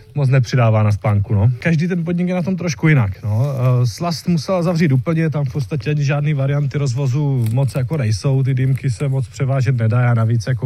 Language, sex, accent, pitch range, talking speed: Czech, male, native, 125-150 Hz, 205 wpm